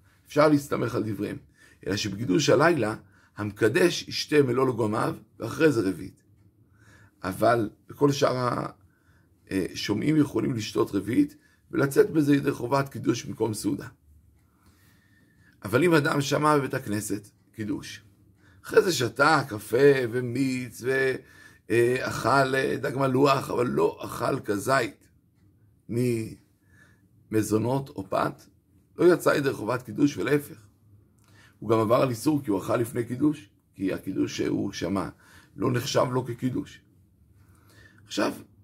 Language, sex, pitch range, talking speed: Hebrew, male, 100-140 Hz, 115 wpm